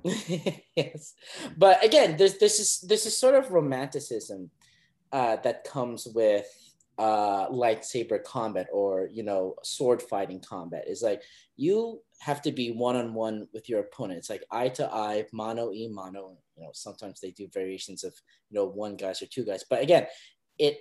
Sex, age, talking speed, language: male, 30-49, 165 wpm, English